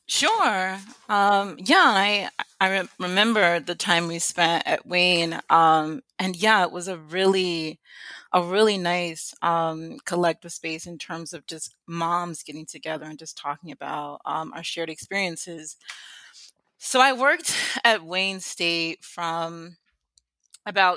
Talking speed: 140 wpm